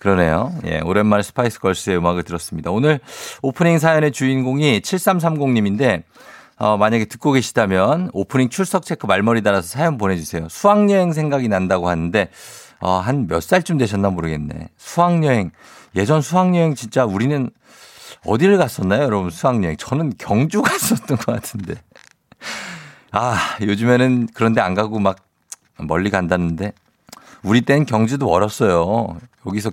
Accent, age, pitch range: native, 50-69, 95-160 Hz